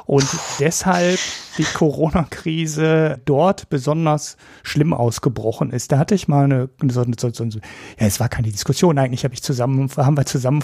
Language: German